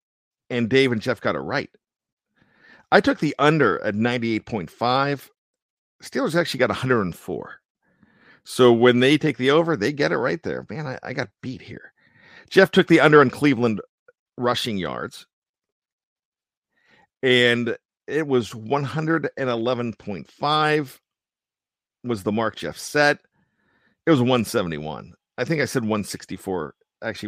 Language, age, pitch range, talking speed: English, 50-69, 105-140 Hz, 130 wpm